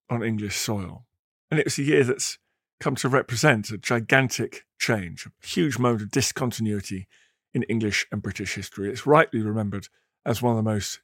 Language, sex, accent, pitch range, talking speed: English, male, British, 110-140 Hz, 180 wpm